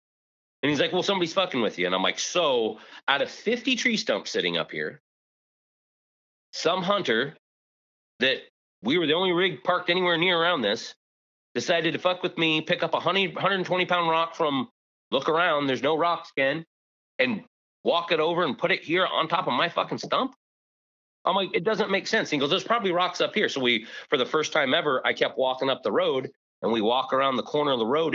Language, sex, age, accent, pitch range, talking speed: English, male, 30-49, American, 135-190 Hz, 220 wpm